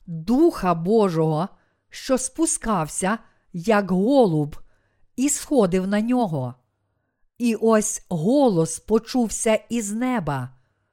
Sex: female